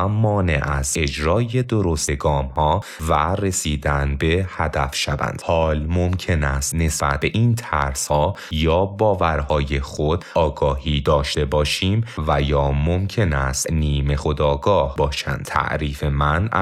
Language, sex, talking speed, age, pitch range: Persian, male, 125 wpm, 30-49, 70-90 Hz